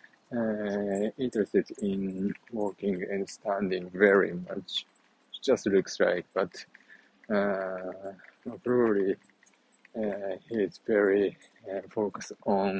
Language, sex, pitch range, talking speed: English, male, 95-105 Hz, 100 wpm